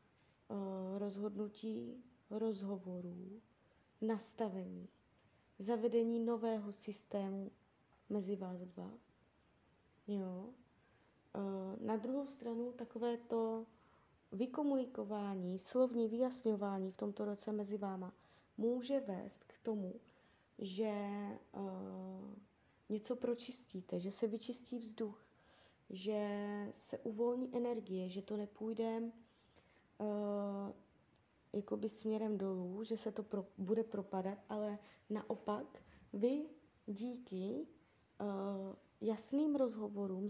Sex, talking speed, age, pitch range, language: female, 80 wpm, 20-39, 200-235 Hz, Czech